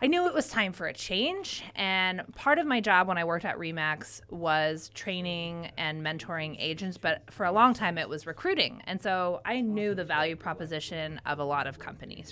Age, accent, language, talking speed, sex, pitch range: 20-39, American, English, 210 wpm, female, 150-190 Hz